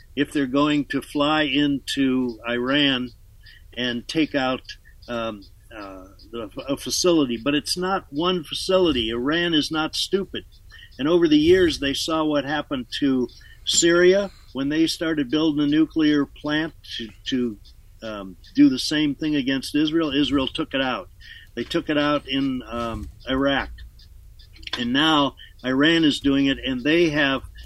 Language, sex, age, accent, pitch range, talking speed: English, male, 50-69, American, 120-155 Hz, 150 wpm